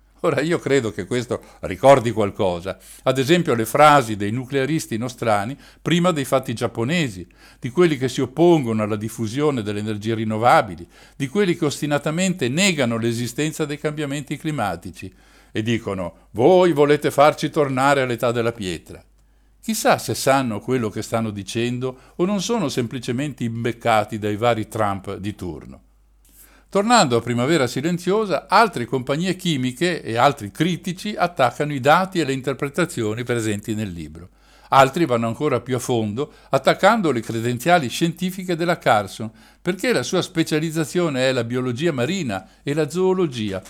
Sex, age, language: male, 60-79, Italian